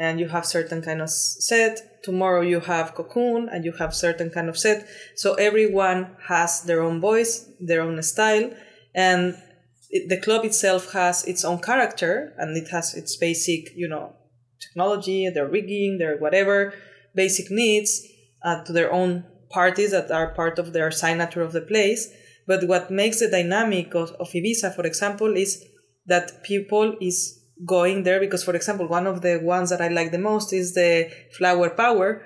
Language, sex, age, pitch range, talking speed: English, female, 20-39, 170-195 Hz, 180 wpm